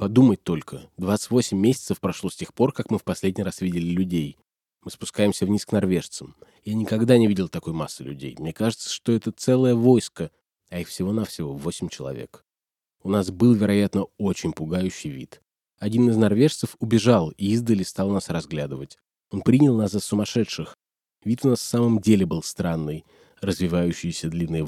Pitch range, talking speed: 85-110 Hz, 170 wpm